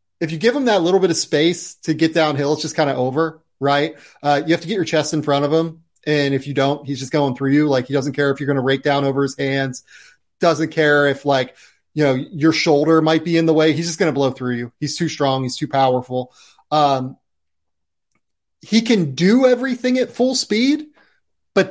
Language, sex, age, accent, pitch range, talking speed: English, male, 30-49, American, 140-170 Hz, 240 wpm